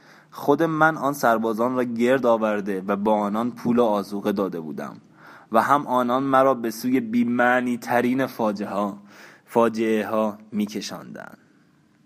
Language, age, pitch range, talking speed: Persian, 20-39, 105-120 Hz, 130 wpm